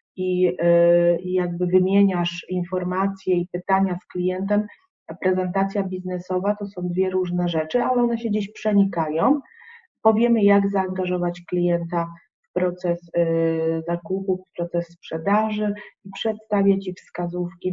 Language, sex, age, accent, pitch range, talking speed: Polish, female, 30-49, native, 175-200 Hz, 120 wpm